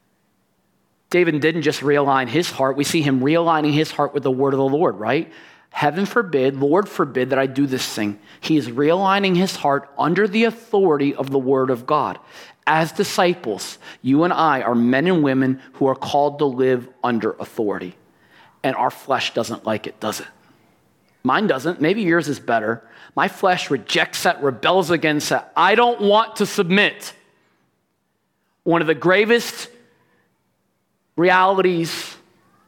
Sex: male